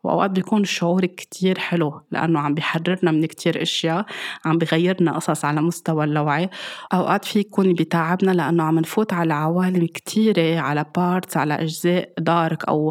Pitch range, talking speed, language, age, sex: 155-180 Hz, 155 wpm, Arabic, 20-39, female